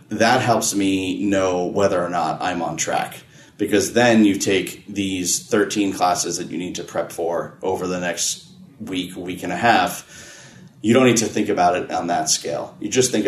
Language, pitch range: English, 95-115 Hz